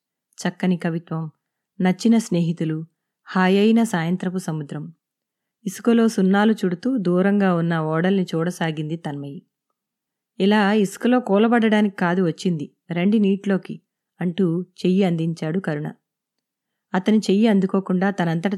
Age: 20-39